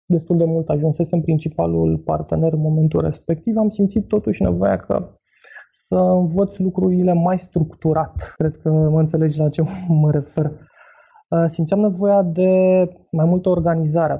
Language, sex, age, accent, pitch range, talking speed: Romanian, male, 20-39, native, 155-185 Hz, 140 wpm